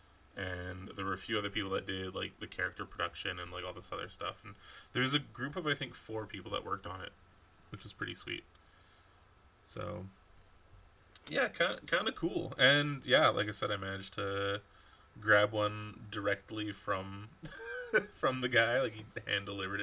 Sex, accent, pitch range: male, American, 95-110 Hz